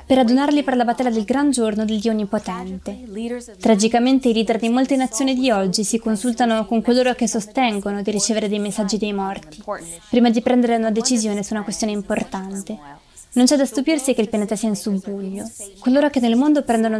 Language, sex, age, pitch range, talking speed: Italian, female, 20-39, 215-255 Hz, 195 wpm